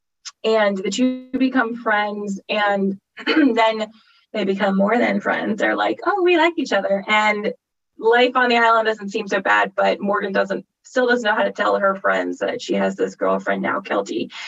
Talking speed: 190 wpm